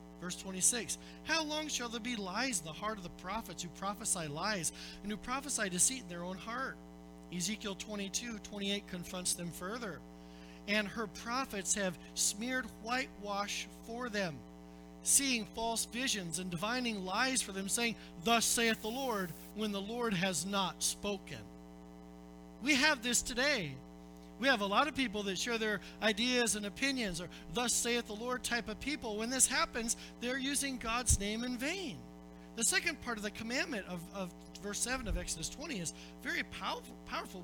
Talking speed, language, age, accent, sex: 175 wpm, English, 40-59, American, male